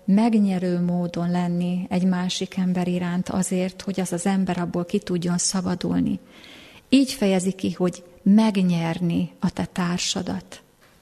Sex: female